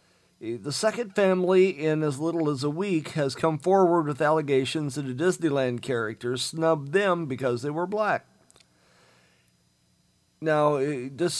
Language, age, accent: English, 50-69, American